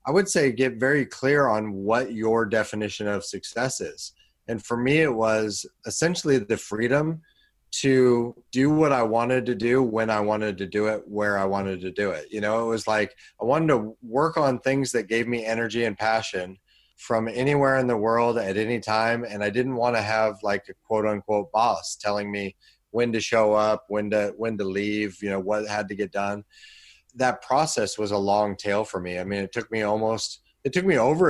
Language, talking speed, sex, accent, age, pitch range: English, 215 wpm, male, American, 30-49, 100-120 Hz